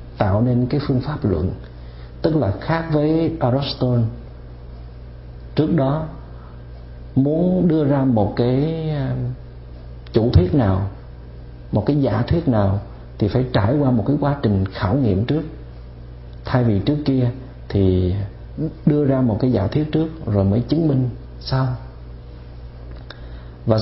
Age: 50-69